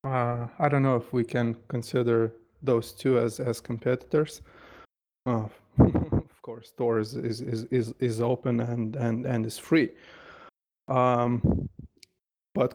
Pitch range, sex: 120-135 Hz, male